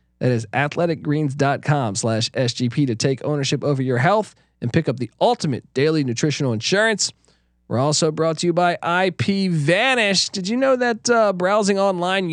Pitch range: 135-190 Hz